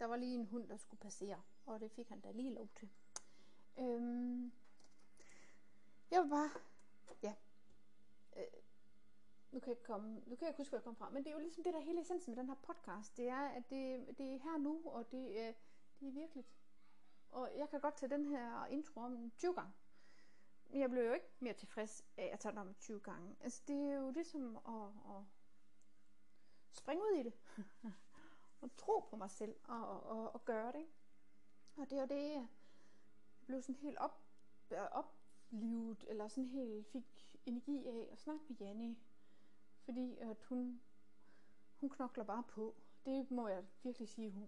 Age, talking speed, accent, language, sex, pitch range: 30-49, 195 wpm, native, Danish, female, 205-270 Hz